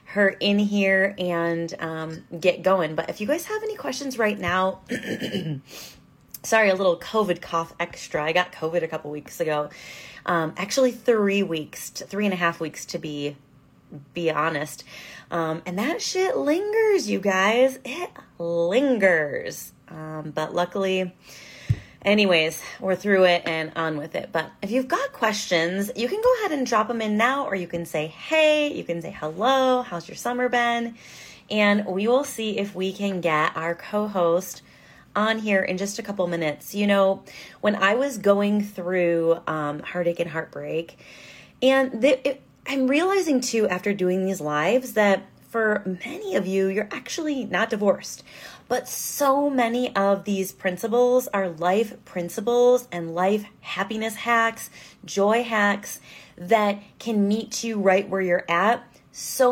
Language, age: English, 30-49